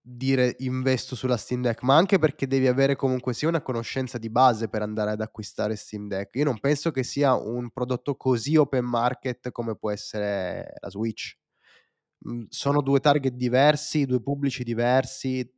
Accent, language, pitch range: native, Italian, 110-130 Hz